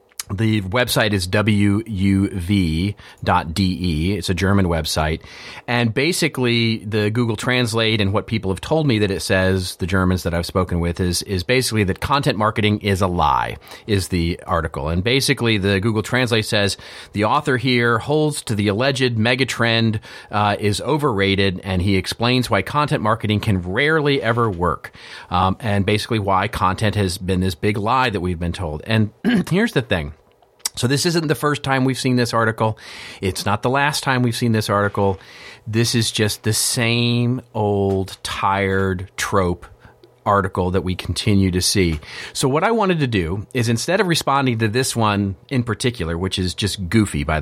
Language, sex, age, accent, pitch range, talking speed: English, male, 40-59, American, 95-125 Hz, 175 wpm